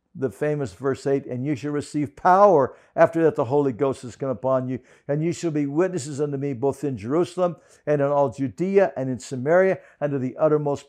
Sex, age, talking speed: male, 60-79, 215 wpm